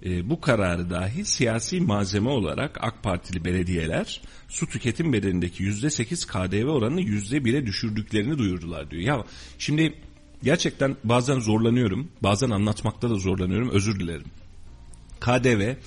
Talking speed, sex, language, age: 120 wpm, male, Turkish, 40-59